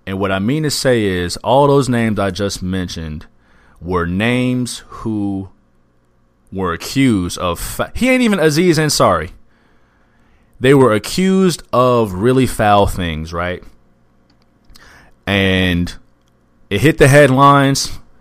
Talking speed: 120 wpm